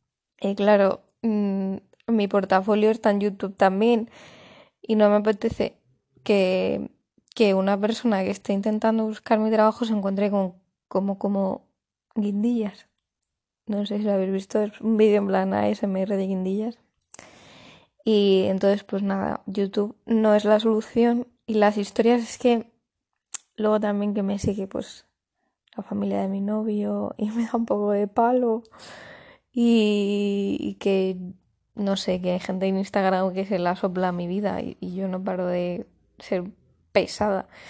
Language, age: Spanish, 10-29